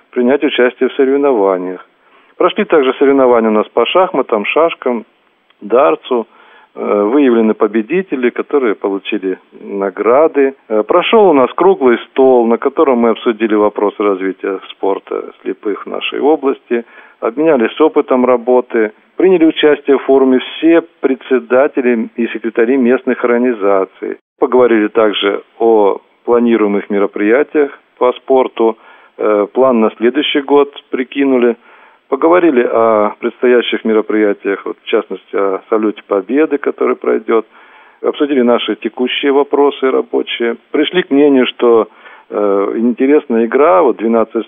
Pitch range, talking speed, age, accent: 110-140 Hz, 115 wpm, 40-59, native